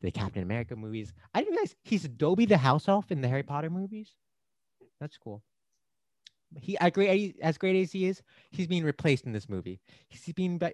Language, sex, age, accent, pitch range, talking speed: English, male, 30-49, American, 105-170 Hz, 185 wpm